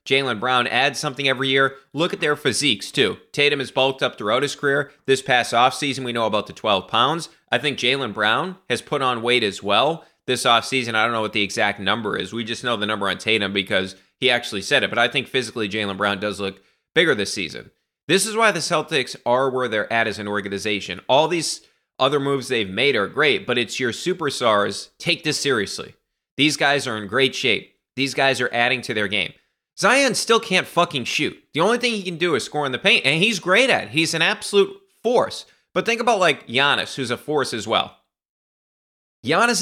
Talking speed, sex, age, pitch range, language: 220 wpm, male, 30-49, 110-150 Hz, English